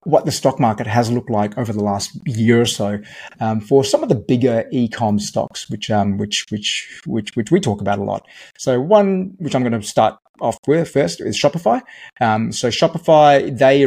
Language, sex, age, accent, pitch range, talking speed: English, male, 30-49, Australian, 105-130 Hz, 210 wpm